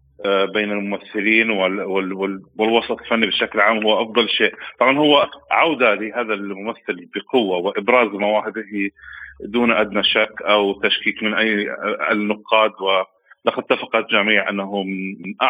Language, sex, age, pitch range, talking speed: Arabic, male, 40-59, 100-120 Hz, 115 wpm